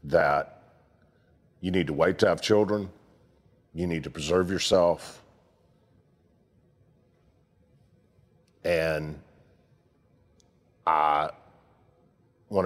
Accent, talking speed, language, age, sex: American, 75 wpm, English, 50-69, male